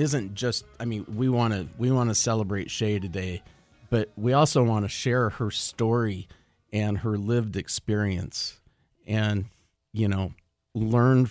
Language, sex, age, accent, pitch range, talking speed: English, male, 40-59, American, 95-115 Hz, 145 wpm